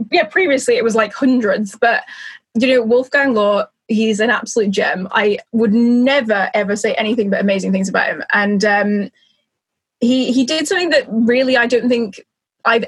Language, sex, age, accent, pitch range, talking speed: English, female, 10-29, British, 215-260 Hz, 175 wpm